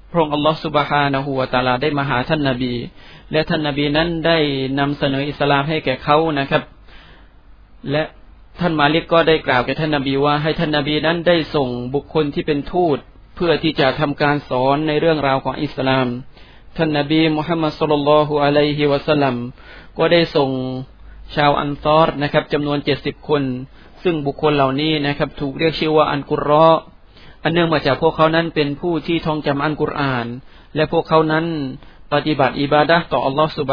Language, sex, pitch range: Thai, male, 135-155 Hz